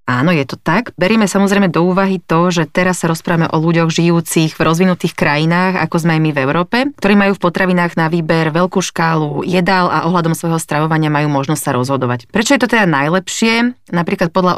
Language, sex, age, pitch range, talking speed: Slovak, female, 30-49, 155-185 Hz, 200 wpm